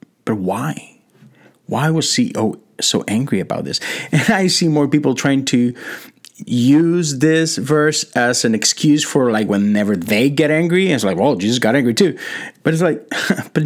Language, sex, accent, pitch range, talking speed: English, male, American, 115-155 Hz, 165 wpm